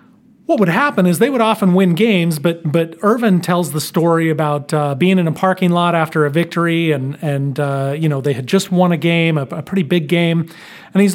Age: 40-59